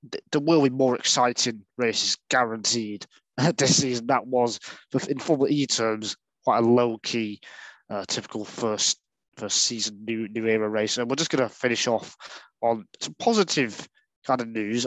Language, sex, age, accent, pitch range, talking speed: English, male, 20-39, British, 110-130 Hz, 155 wpm